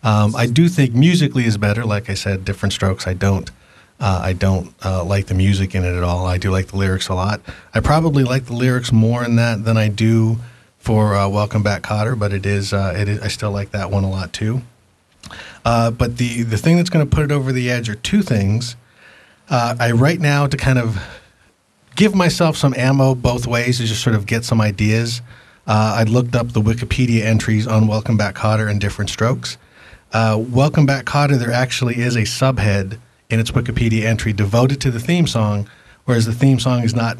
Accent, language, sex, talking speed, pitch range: American, English, male, 220 wpm, 105-125 Hz